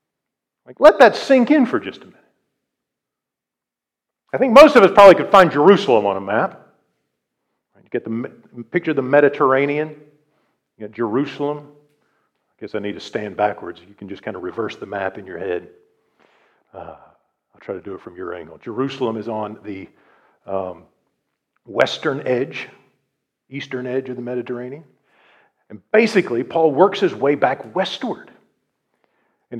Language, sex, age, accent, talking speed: English, male, 50-69, American, 160 wpm